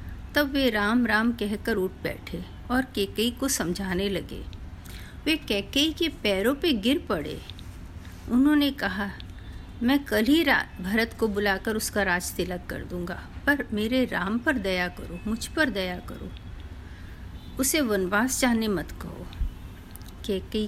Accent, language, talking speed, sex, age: native, Hindi, 140 wpm, female, 50-69